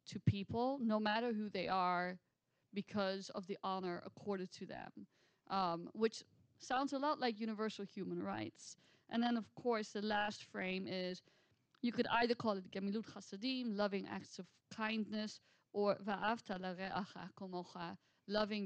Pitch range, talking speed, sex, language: 185-215 Hz, 135 wpm, female, English